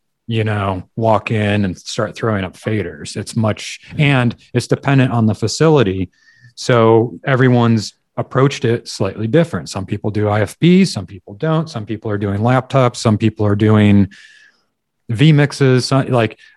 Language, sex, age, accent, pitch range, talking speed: English, male, 30-49, American, 105-130 Hz, 150 wpm